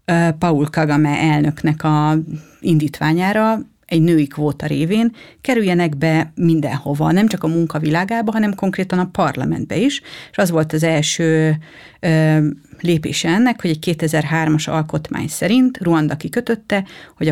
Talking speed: 125 wpm